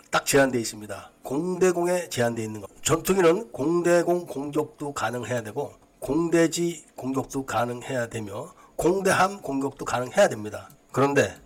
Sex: male